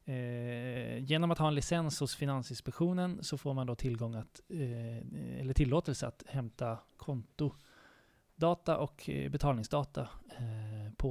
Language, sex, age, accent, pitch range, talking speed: Swedish, male, 20-39, native, 120-145 Hz, 95 wpm